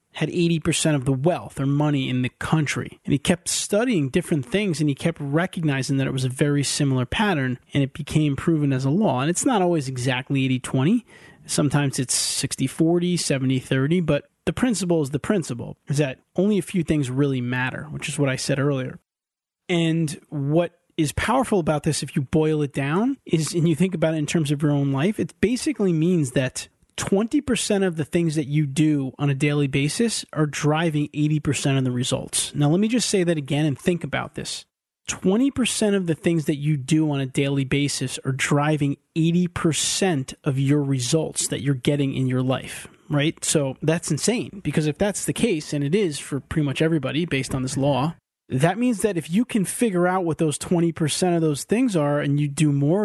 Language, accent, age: English, American, 30-49